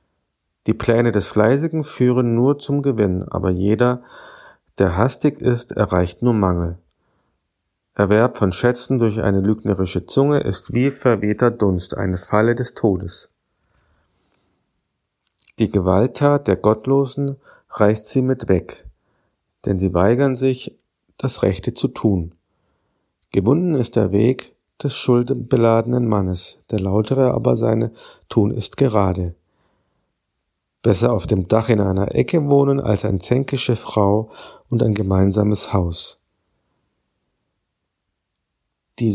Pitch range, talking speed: 95-125 Hz, 120 wpm